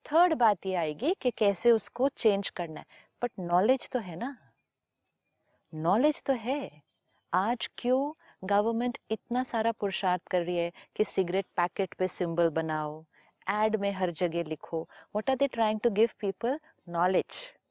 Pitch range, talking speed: 175-240 Hz, 155 wpm